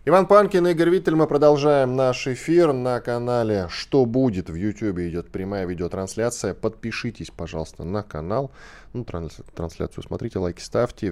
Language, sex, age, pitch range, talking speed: Russian, male, 10-29, 75-110 Hz, 140 wpm